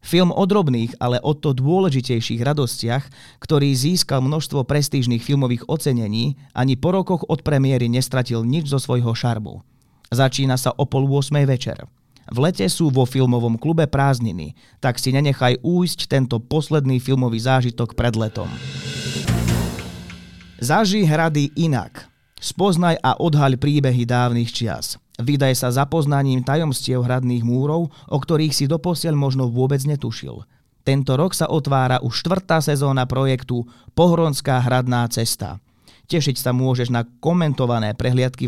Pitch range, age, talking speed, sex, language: 120-145 Hz, 30-49, 135 wpm, male, Slovak